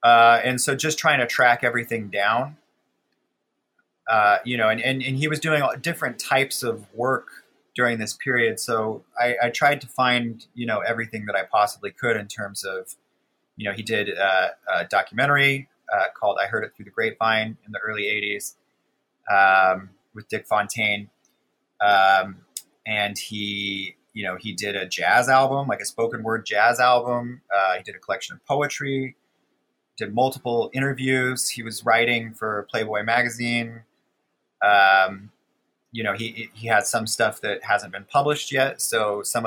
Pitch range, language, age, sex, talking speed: 105-130 Hz, English, 30-49, male, 170 wpm